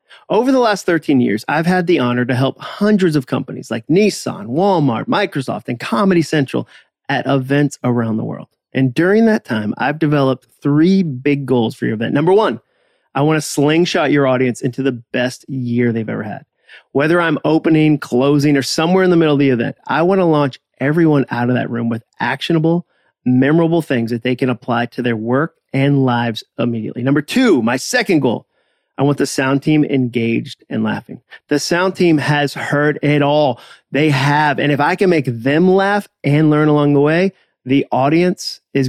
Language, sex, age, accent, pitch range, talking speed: English, male, 30-49, American, 125-160 Hz, 195 wpm